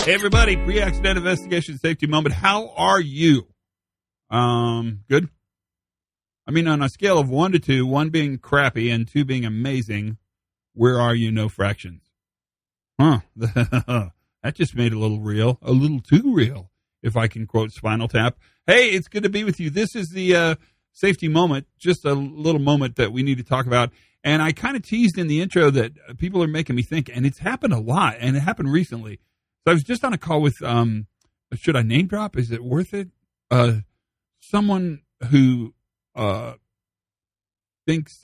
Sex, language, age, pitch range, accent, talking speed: male, English, 40-59, 110-155 Hz, American, 185 wpm